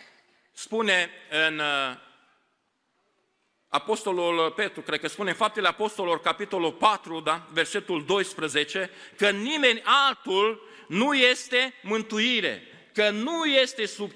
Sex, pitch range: male, 160-230 Hz